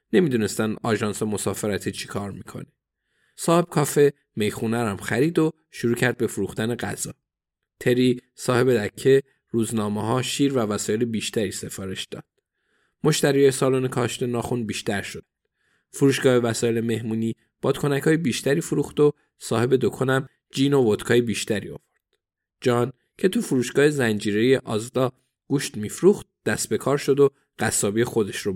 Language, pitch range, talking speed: Persian, 110-130 Hz, 130 wpm